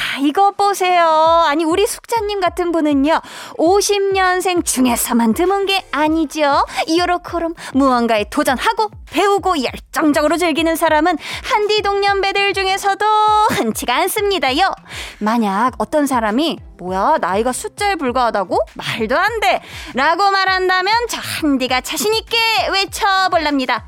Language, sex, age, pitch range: Korean, female, 20-39, 220-360 Hz